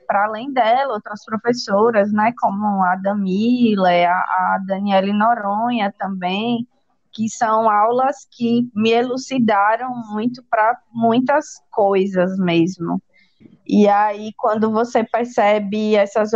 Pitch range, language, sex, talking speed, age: 200-235 Hz, Portuguese, female, 110 wpm, 20-39